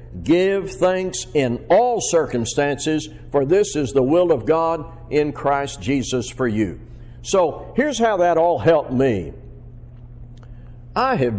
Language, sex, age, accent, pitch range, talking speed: English, male, 60-79, American, 120-170 Hz, 135 wpm